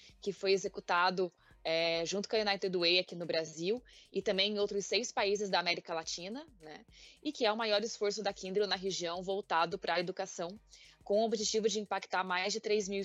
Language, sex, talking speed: Portuguese, female, 205 wpm